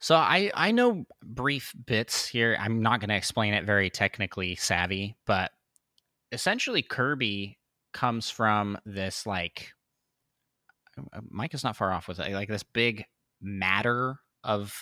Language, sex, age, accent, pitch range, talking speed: English, male, 30-49, American, 95-120 Hz, 140 wpm